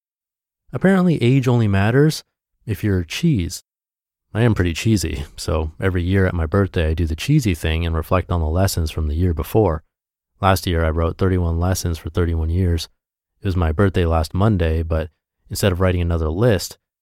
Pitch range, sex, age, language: 85-110 Hz, male, 30-49, English